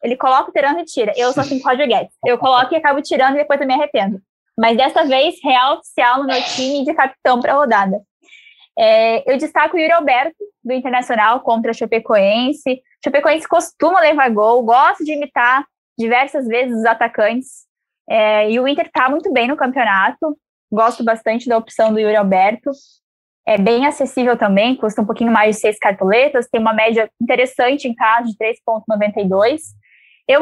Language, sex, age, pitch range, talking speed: Portuguese, female, 10-29, 235-310 Hz, 180 wpm